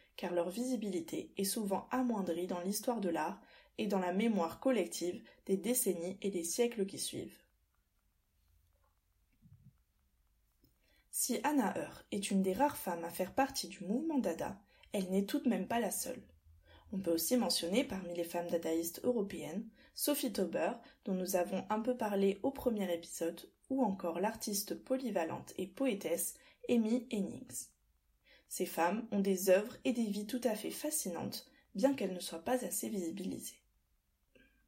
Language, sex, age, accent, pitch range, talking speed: French, female, 20-39, French, 175-250 Hz, 155 wpm